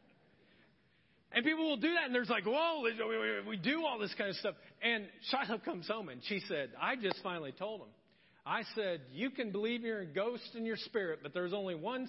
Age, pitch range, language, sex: 40-59, 160-225 Hz, English, male